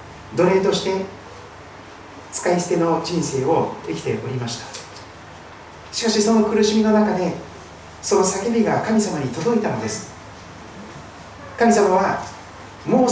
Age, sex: 40-59, male